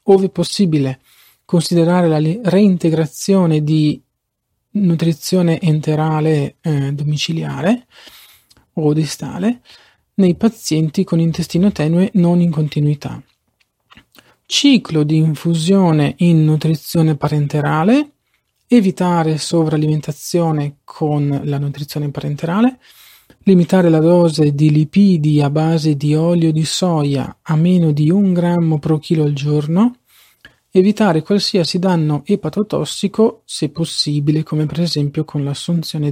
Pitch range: 150-180 Hz